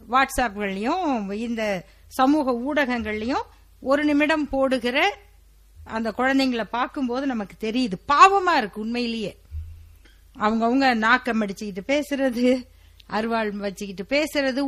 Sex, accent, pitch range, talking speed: female, native, 175-280 Hz, 90 wpm